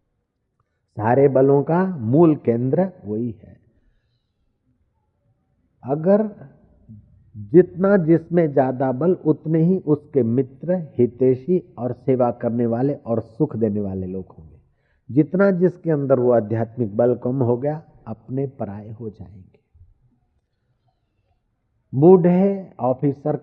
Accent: native